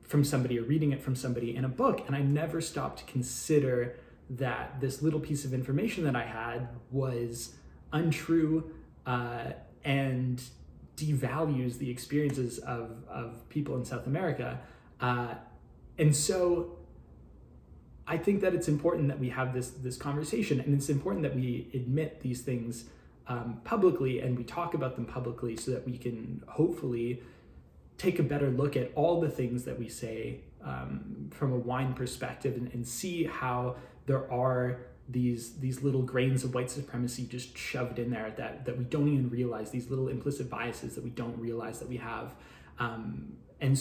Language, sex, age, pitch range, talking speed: English, male, 20-39, 120-140 Hz, 170 wpm